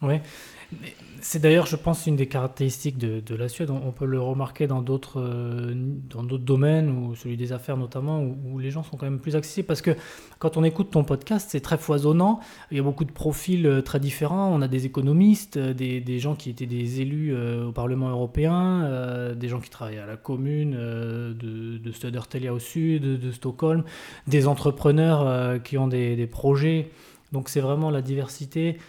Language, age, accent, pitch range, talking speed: French, 20-39, French, 125-155 Hz, 195 wpm